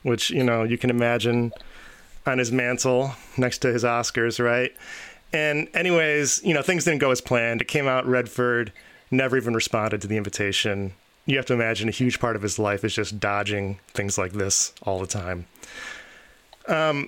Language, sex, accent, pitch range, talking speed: English, male, American, 120-140 Hz, 185 wpm